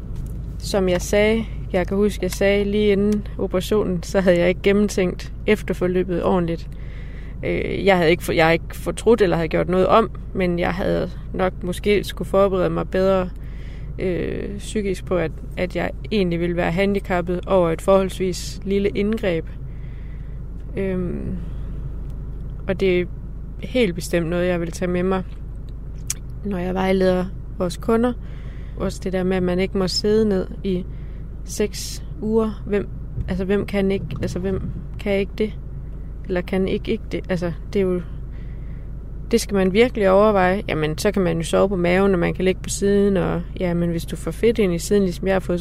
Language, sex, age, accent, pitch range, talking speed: Danish, female, 20-39, native, 175-200 Hz, 180 wpm